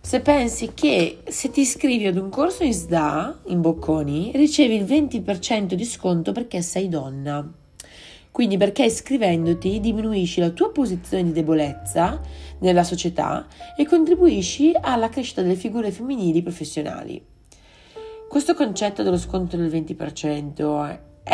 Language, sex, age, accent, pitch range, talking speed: Italian, female, 30-49, native, 160-215 Hz, 130 wpm